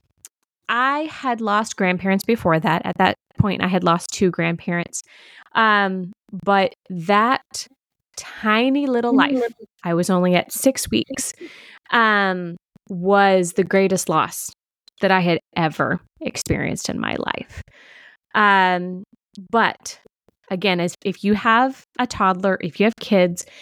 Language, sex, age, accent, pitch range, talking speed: English, female, 20-39, American, 180-220 Hz, 130 wpm